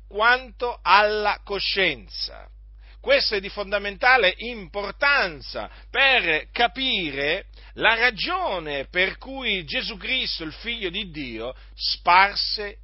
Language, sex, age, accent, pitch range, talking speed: Italian, male, 50-69, native, 150-255 Hz, 100 wpm